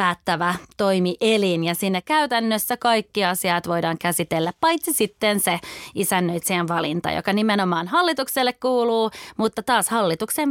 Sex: female